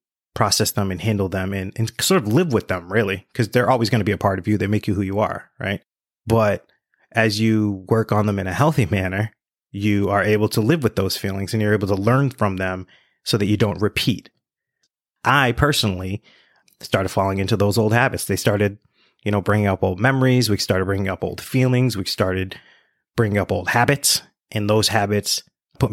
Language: English